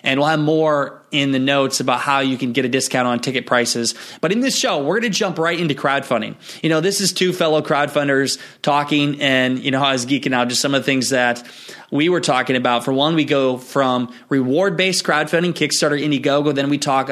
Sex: male